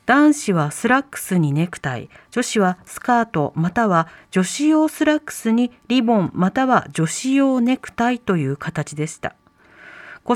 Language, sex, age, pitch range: Japanese, female, 40-59, 175-265 Hz